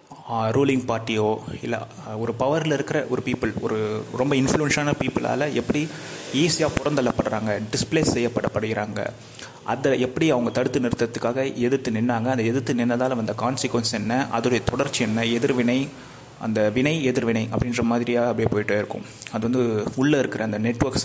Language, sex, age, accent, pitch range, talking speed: Tamil, male, 30-49, native, 115-130 Hz, 135 wpm